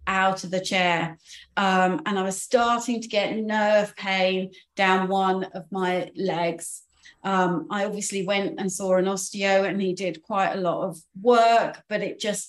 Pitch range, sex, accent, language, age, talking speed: 180-195 Hz, female, British, English, 30-49, 180 wpm